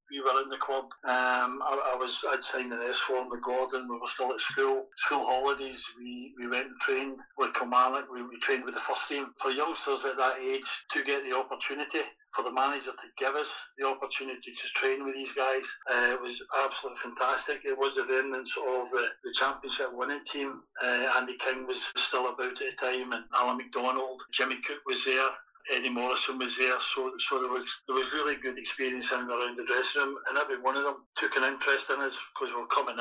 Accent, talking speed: British, 225 wpm